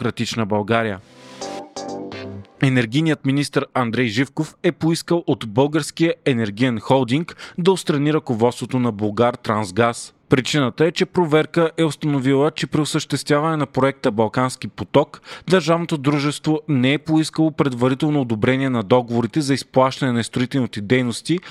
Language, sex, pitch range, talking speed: Bulgarian, male, 120-150 Hz, 120 wpm